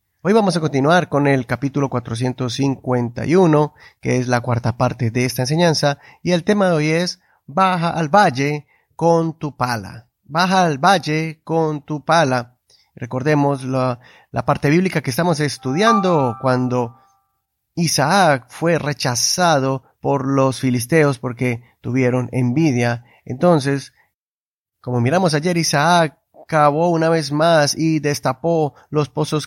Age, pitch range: 30-49, 130-160 Hz